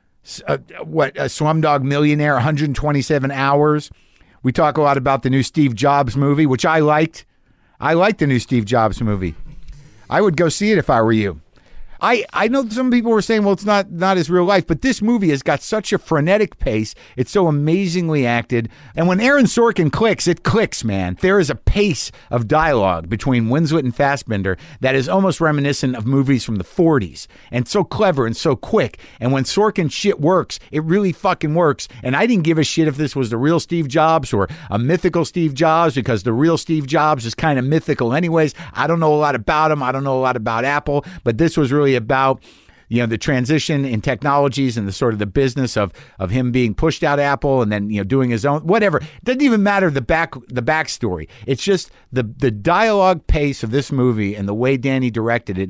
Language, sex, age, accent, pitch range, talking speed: English, male, 50-69, American, 120-165 Hz, 220 wpm